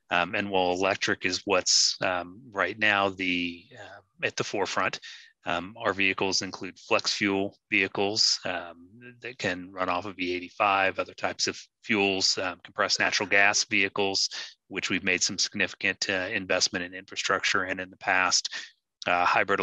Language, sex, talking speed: English, male, 165 wpm